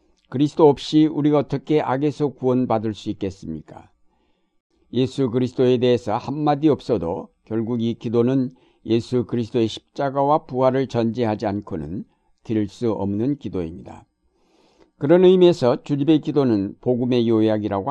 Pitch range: 110-140 Hz